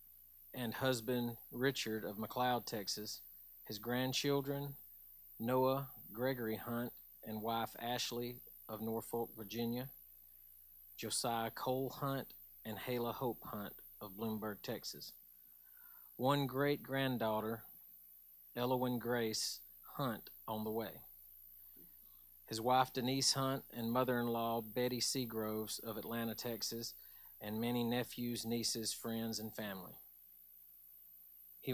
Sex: male